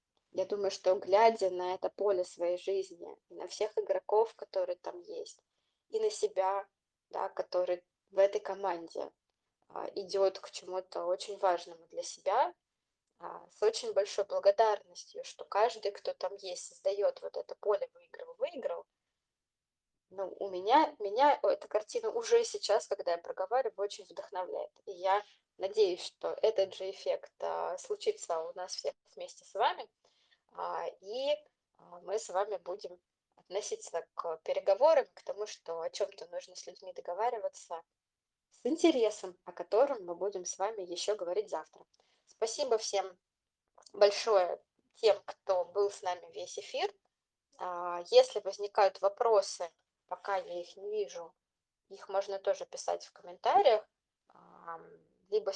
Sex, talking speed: female, 140 wpm